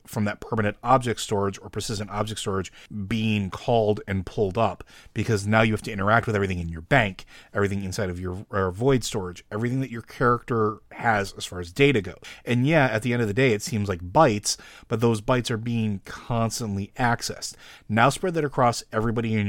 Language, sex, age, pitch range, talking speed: English, male, 30-49, 100-120 Hz, 205 wpm